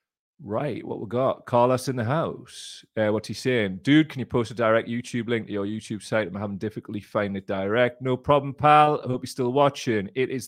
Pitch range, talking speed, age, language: 105-130 Hz, 230 wpm, 30-49, English